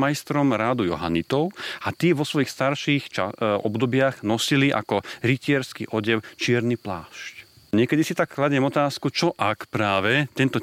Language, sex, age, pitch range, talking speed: Slovak, male, 40-59, 110-140 Hz, 135 wpm